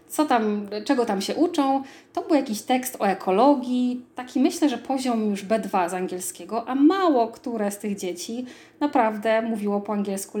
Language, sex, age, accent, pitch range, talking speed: Polish, female, 20-39, native, 210-270 Hz, 160 wpm